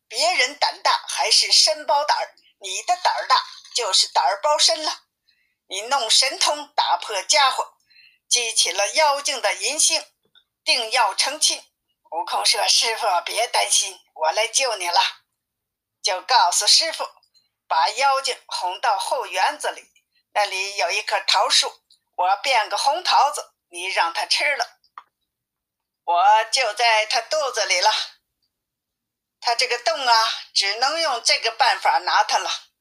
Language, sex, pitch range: Chinese, female, 220-335 Hz